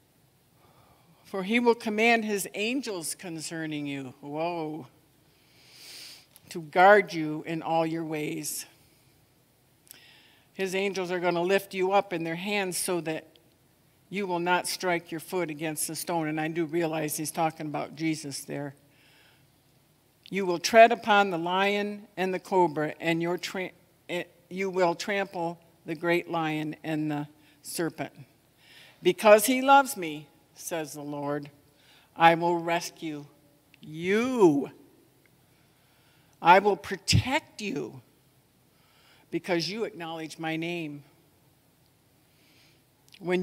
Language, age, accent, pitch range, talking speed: English, 60-79, American, 145-180 Hz, 120 wpm